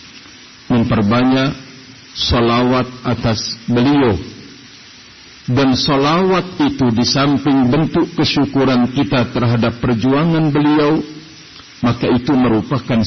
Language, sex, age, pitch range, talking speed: Indonesian, male, 50-69, 115-140 Hz, 85 wpm